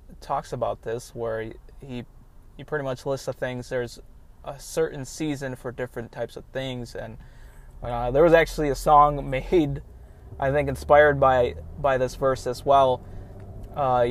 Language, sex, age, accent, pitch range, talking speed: English, male, 20-39, American, 125-145 Hz, 165 wpm